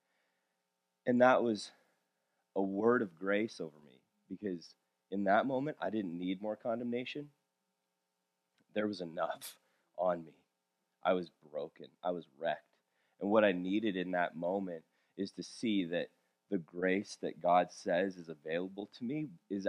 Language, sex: English, male